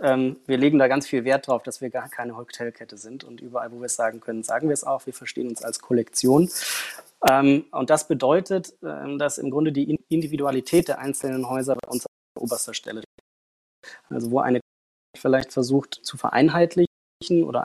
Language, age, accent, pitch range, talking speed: German, 20-39, German, 125-145 Hz, 180 wpm